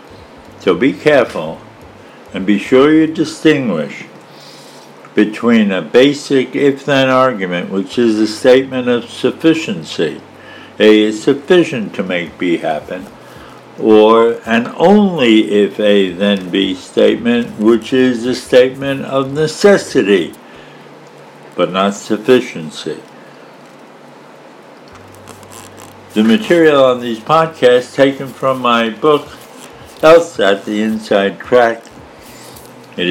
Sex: male